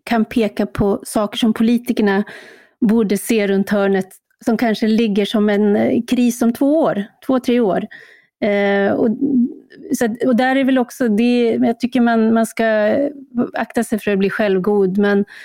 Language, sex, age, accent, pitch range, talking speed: Swedish, female, 30-49, native, 200-235 Hz, 160 wpm